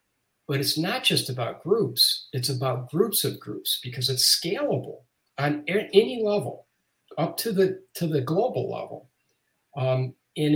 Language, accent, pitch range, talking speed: English, American, 130-185 Hz, 155 wpm